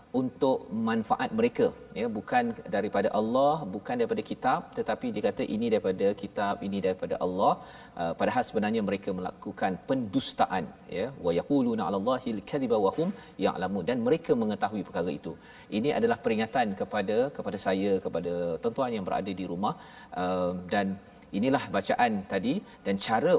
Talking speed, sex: 140 wpm, male